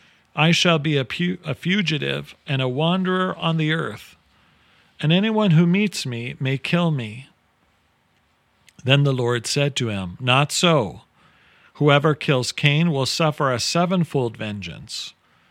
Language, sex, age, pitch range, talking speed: English, male, 40-59, 120-160 Hz, 140 wpm